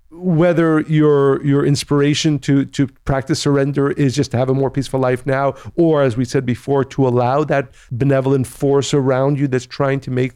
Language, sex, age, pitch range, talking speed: English, male, 50-69, 120-140 Hz, 190 wpm